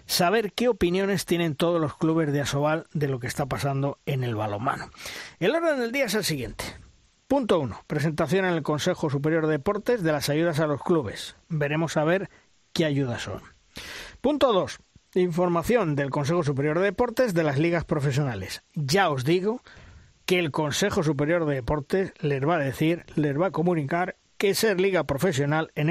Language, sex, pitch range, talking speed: Spanish, male, 145-190 Hz, 185 wpm